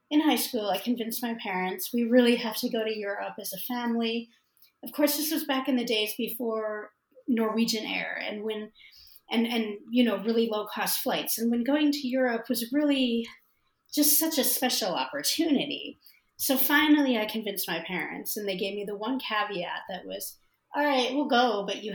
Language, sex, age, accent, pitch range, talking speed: English, female, 30-49, American, 200-250 Hz, 195 wpm